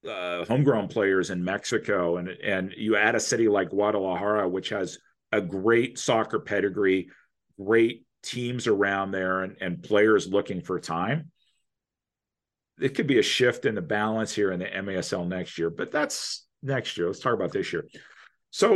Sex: male